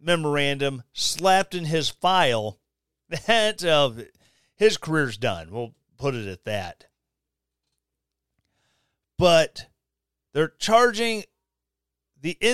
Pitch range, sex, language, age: 130-215 Hz, male, English, 40-59